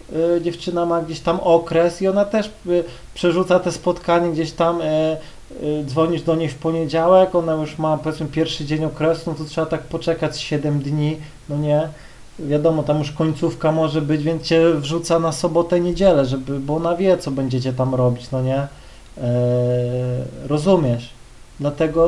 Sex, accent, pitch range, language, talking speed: male, native, 150-175 Hz, Polish, 165 wpm